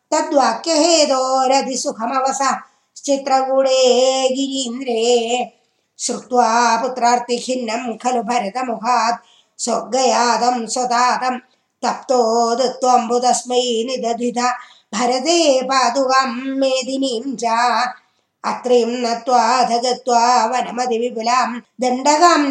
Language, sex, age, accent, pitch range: Tamil, female, 20-39, native, 235-265 Hz